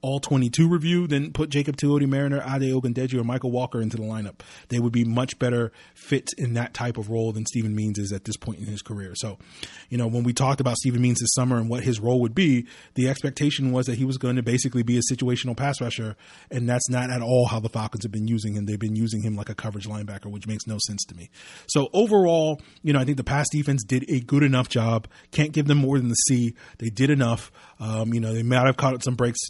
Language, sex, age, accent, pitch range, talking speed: English, male, 30-49, American, 115-135 Hz, 260 wpm